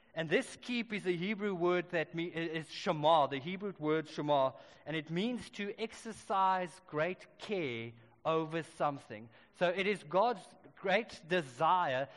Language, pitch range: English, 150-195 Hz